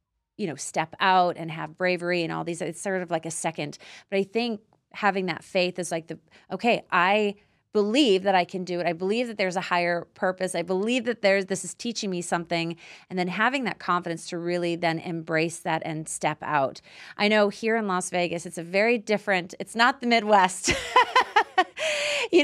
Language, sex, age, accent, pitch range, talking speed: English, female, 30-49, American, 165-200 Hz, 205 wpm